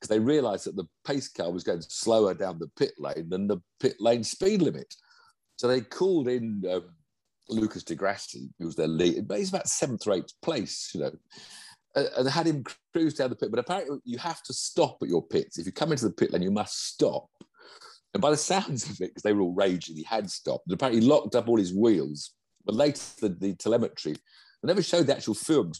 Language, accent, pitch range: English, British, 90-145 Hz